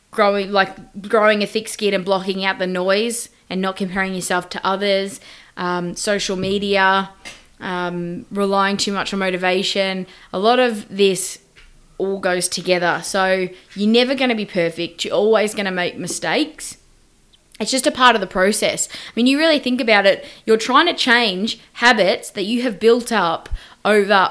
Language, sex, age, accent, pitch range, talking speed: English, female, 20-39, Australian, 195-230 Hz, 175 wpm